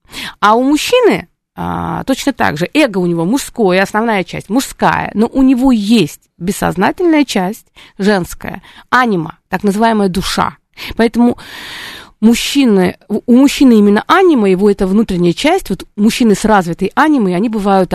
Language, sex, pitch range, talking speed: Russian, female, 190-260 Hz, 140 wpm